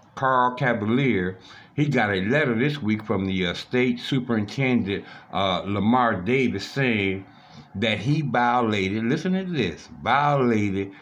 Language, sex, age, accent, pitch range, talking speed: English, male, 60-79, American, 95-125 Hz, 130 wpm